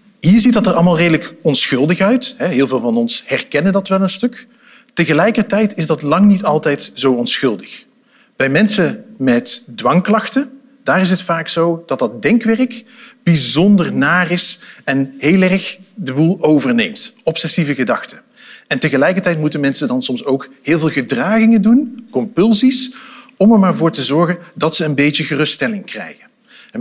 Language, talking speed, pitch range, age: Dutch, 165 wpm, 150-225 Hz, 50-69